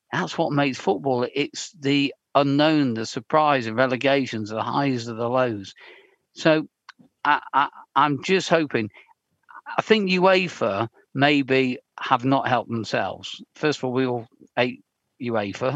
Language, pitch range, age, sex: English, 120-140 Hz, 50-69, male